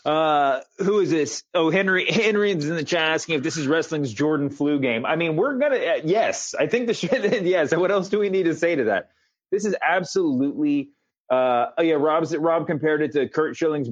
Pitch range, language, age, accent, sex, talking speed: 140-195 Hz, English, 30-49, American, male, 235 wpm